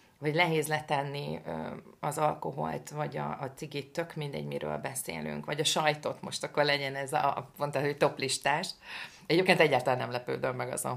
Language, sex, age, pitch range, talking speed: Hungarian, female, 30-49, 125-155 Hz, 165 wpm